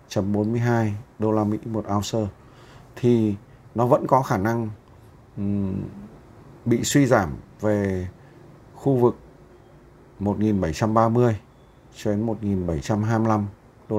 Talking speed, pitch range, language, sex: 100 wpm, 100-125 Hz, Vietnamese, male